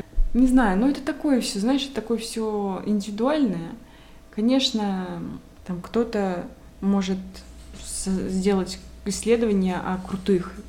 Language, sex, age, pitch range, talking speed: Russian, female, 20-39, 175-230 Hz, 110 wpm